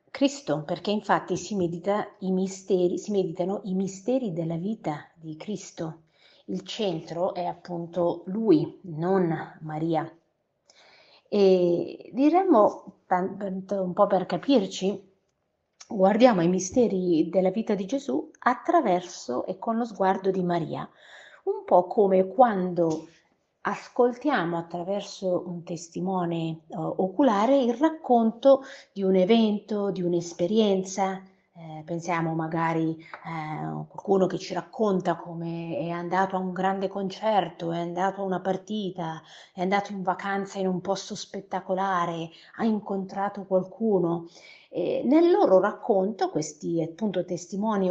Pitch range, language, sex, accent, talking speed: 175-205 Hz, Italian, female, native, 125 wpm